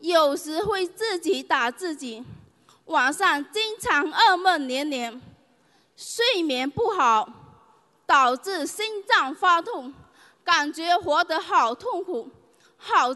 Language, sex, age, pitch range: Chinese, female, 20-39, 280-385 Hz